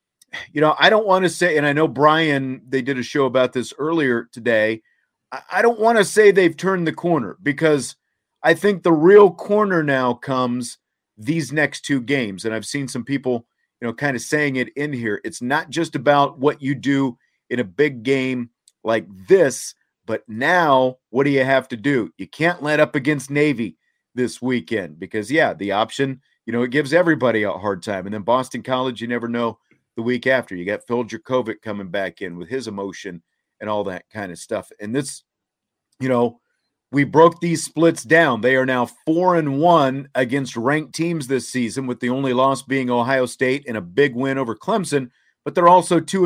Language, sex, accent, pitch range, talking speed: English, male, American, 120-150 Hz, 205 wpm